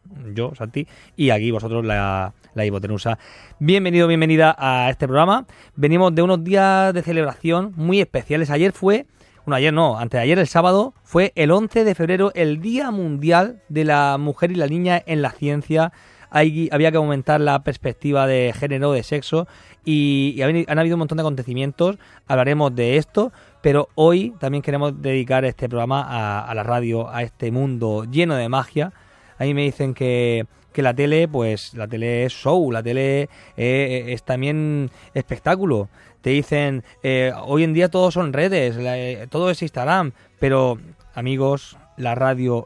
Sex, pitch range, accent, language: male, 125-165 Hz, Spanish, Spanish